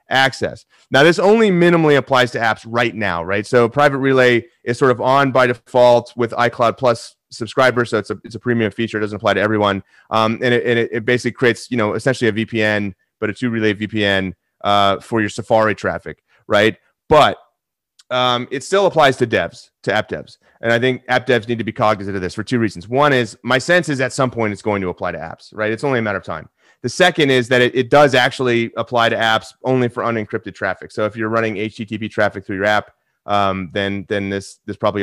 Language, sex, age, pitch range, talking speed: English, male, 30-49, 105-130 Hz, 230 wpm